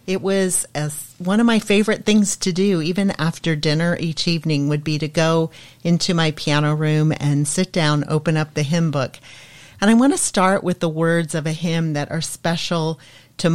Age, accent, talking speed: 40-59, American, 205 wpm